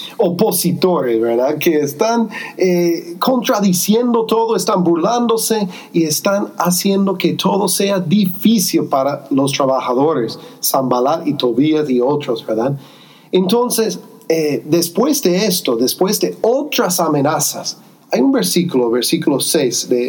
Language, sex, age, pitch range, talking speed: English, male, 40-59, 145-200 Hz, 120 wpm